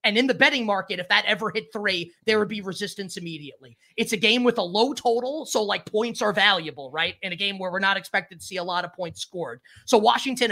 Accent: American